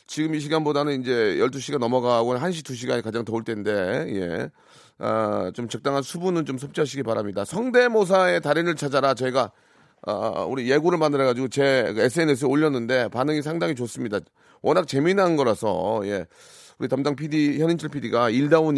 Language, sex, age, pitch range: Korean, male, 30-49, 130-180 Hz